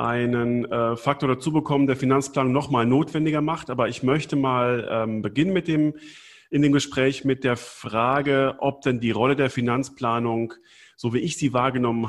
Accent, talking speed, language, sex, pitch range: German, 175 wpm, German, male, 120-145 Hz